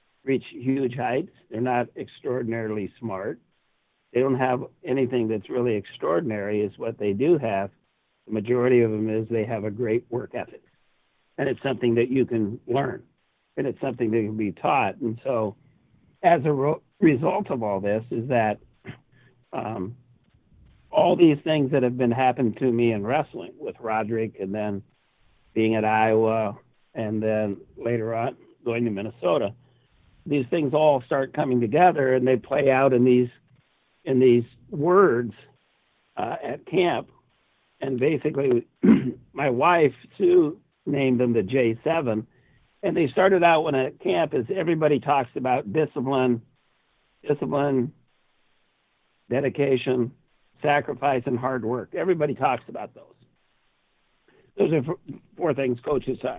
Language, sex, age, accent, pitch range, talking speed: English, male, 60-79, American, 115-135 Hz, 145 wpm